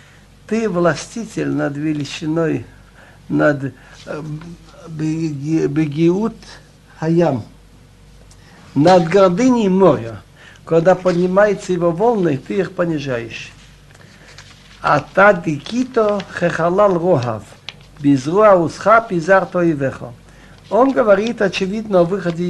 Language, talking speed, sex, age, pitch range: Russian, 85 wpm, male, 60-79, 150-200 Hz